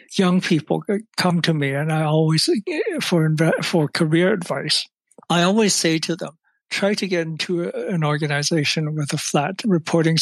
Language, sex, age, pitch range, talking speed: English, male, 60-79, 155-185 Hz, 165 wpm